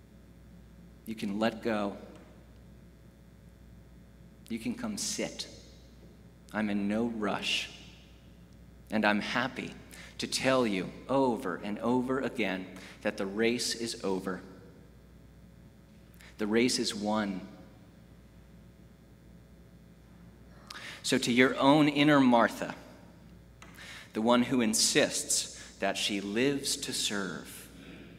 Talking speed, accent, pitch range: 100 wpm, American, 95-130 Hz